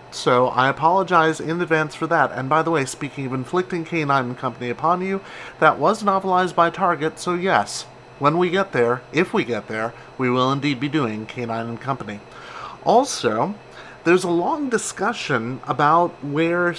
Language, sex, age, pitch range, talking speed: English, male, 30-49, 130-175 Hz, 175 wpm